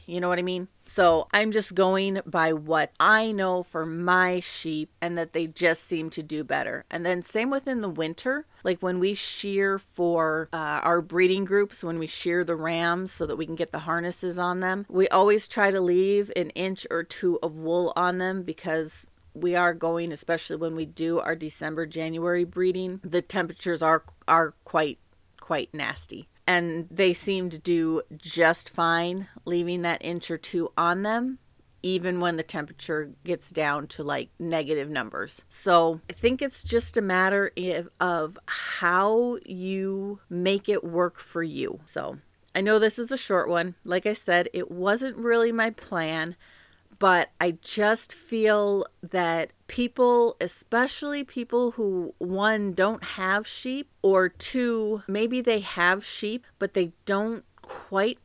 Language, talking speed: English, 170 wpm